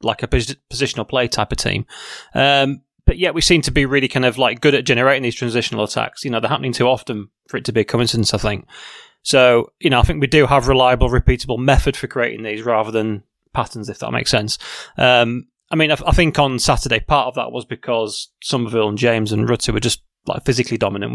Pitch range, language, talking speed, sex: 115-140 Hz, English, 235 wpm, male